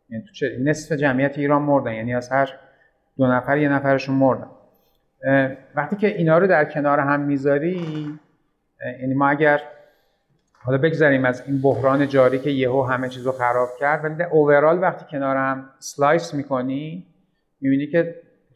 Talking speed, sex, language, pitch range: 150 wpm, male, Persian, 125-155 Hz